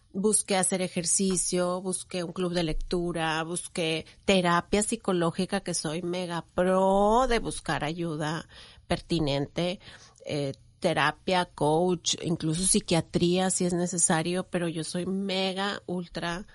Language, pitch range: Spanish, 165-195 Hz